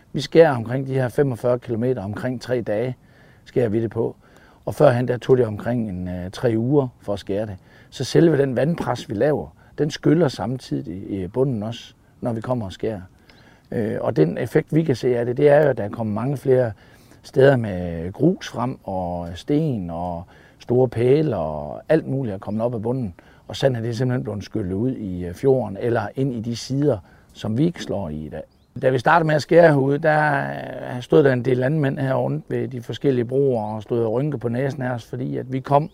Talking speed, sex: 210 wpm, male